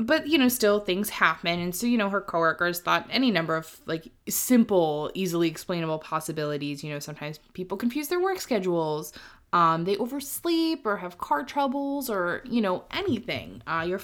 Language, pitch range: English, 165-230 Hz